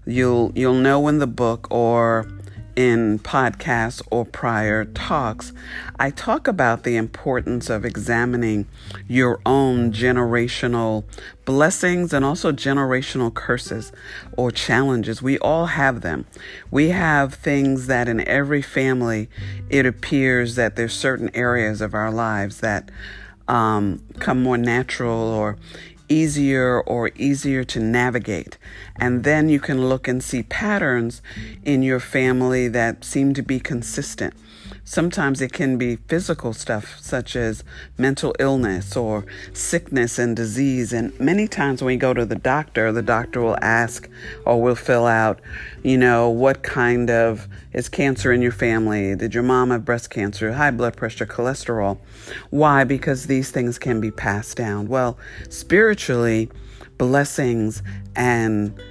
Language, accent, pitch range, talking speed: English, American, 110-130 Hz, 140 wpm